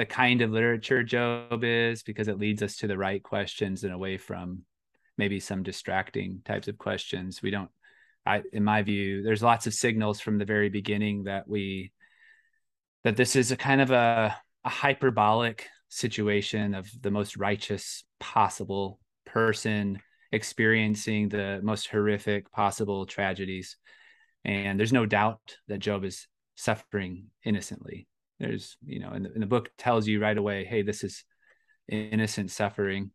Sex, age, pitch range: male, 30-49, 100-120 Hz